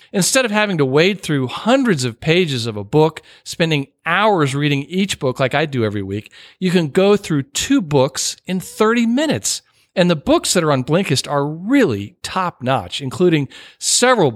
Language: English